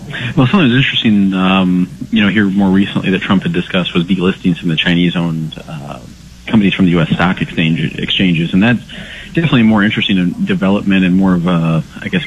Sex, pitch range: male, 85-100 Hz